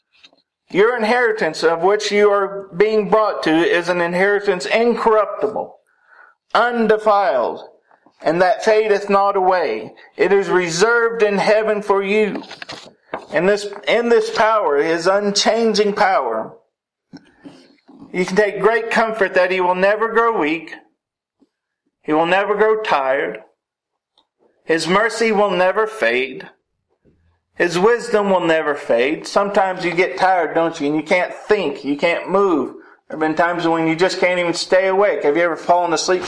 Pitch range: 165-215 Hz